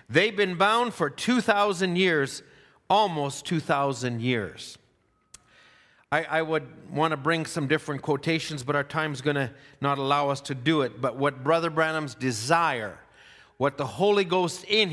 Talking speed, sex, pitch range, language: 165 wpm, male, 140-180 Hz, English